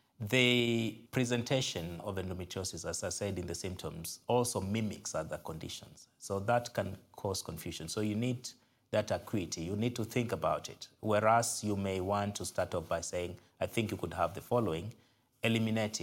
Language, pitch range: English, 90-115 Hz